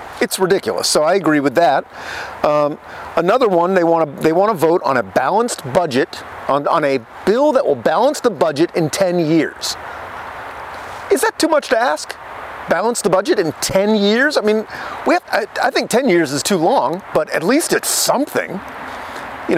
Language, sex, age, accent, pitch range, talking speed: English, male, 40-59, American, 170-240 Hz, 195 wpm